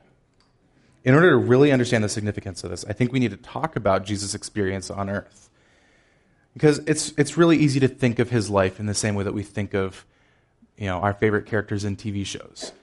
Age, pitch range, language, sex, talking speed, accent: 30-49, 100-125 Hz, English, male, 215 wpm, American